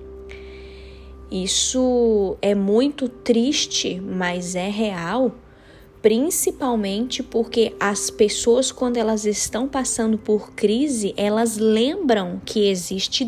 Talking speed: 95 wpm